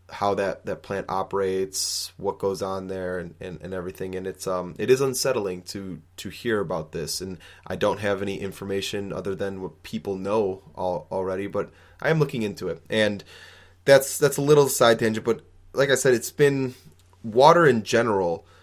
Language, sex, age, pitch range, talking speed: English, male, 20-39, 90-110 Hz, 185 wpm